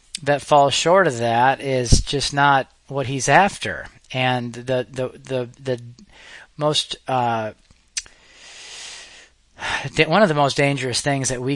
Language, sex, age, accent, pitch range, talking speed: English, male, 30-49, American, 115-140 Hz, 135 wpm